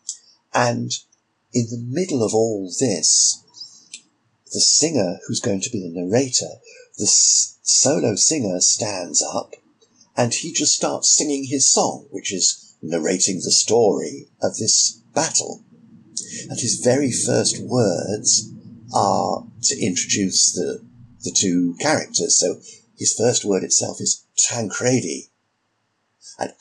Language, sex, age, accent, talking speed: English, male, 50-69, British, 125 wpm